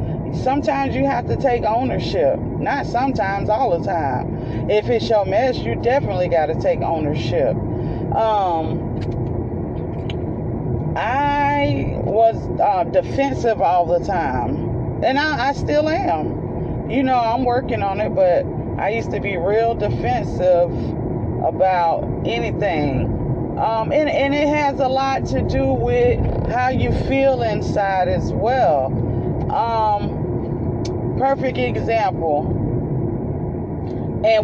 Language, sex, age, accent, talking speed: English, female, 30-49, American, 120 wpm